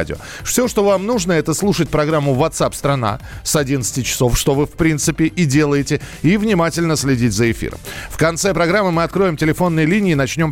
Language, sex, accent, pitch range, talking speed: Russian, male, native, 140-170 Hz, 185 wpm